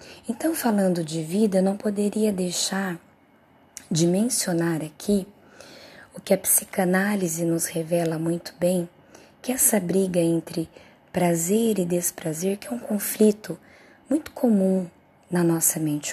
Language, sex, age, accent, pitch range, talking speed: Portuguese, female, 20-39, Brazilian, 170-215 Hz, 125 wpm